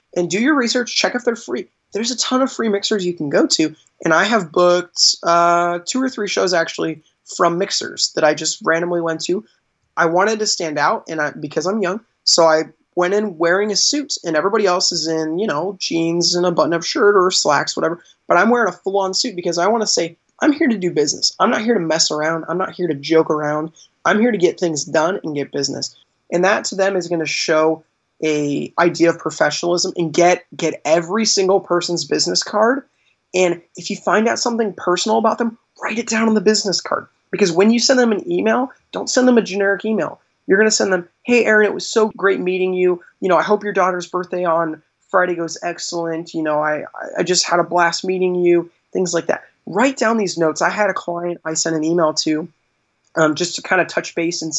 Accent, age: American, 20-39